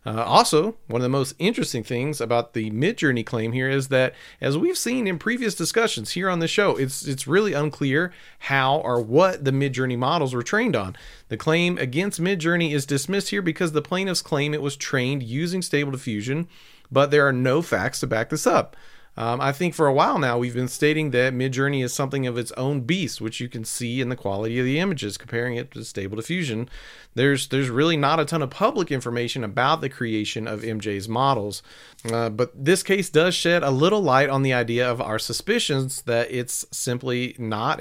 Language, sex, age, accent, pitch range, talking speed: English, male, 40-59, American, 125-165 Hz, 210 wpm